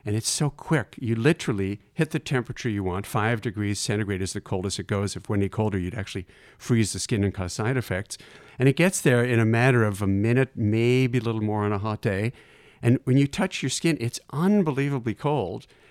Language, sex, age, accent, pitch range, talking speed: English, male, 50-69, American, 105-135 Hz, 225 wpm